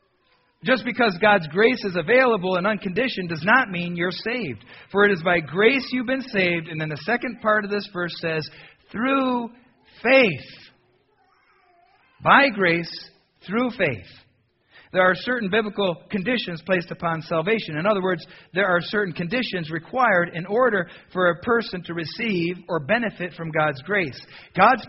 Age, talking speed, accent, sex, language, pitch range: 40-59, 155 wpm, American, male, English, 165-225 Hz